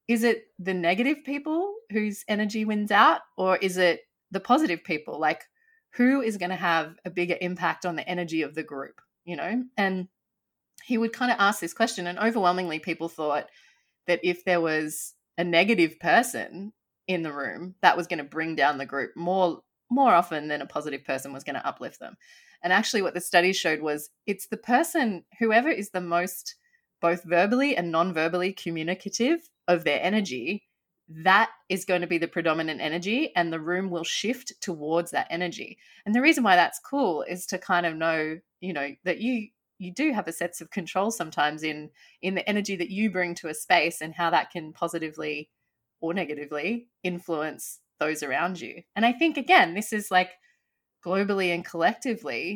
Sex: female